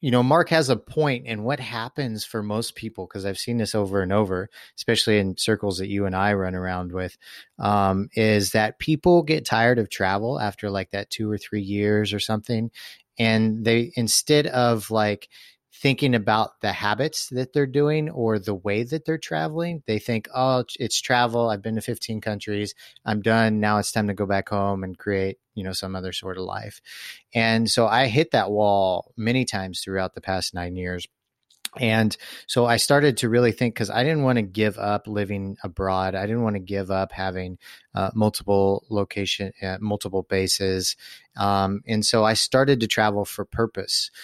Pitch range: 100-120 Hz